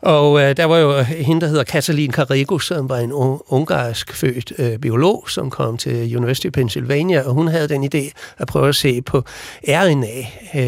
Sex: male